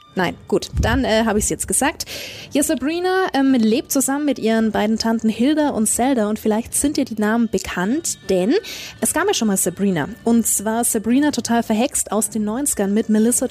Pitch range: 210-265 Hz